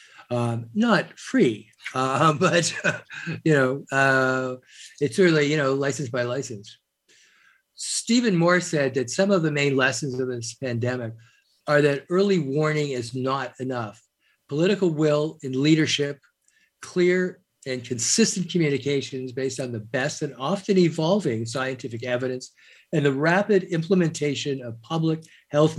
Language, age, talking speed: English, 50-69, 135 wpm